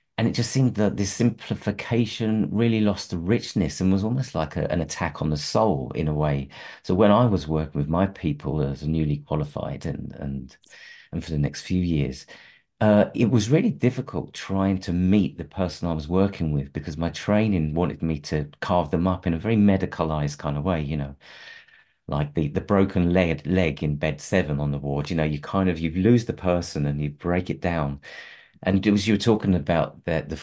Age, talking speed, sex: 40-59, 215 wpm, male